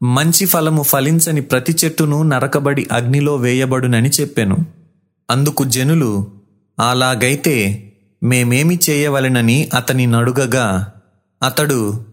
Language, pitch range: Telugu, 120-155 Hz